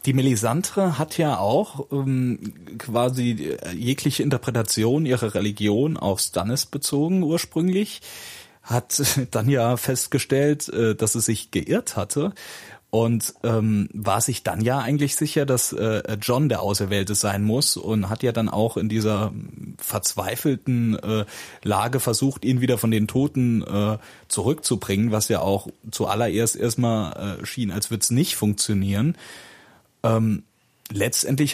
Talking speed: 135 wpm